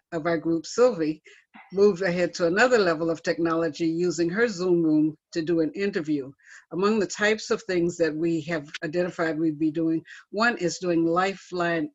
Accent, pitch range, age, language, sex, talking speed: American, 160-195 Hz, 60-79, English, female, 175 wpm